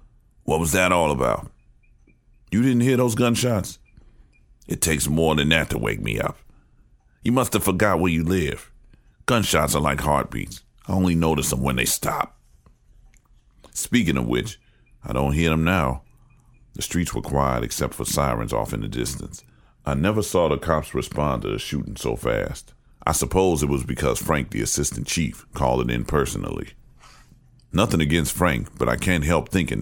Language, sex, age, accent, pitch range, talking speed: English, male, 40-59, American, 70-95 Hz, 175 wpm